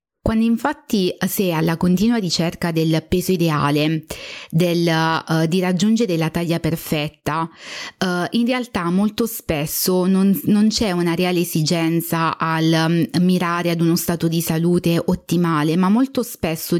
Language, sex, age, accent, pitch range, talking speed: Italian, female, 20-39, native, 165-200 Hz, 130 wpm